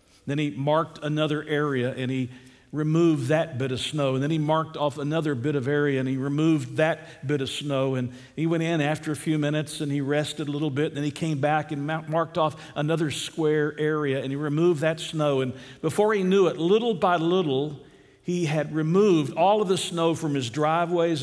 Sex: male